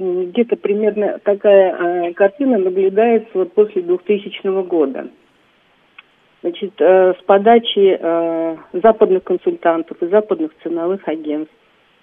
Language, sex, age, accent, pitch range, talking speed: Russian, female, 50-69, native, 175-215 Hz, 105 wpm